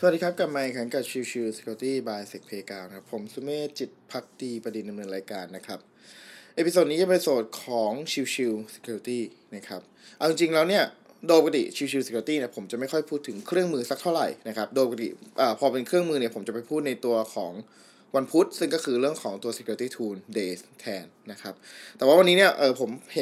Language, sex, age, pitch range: Thai, male, 20-39, 115-155 Hz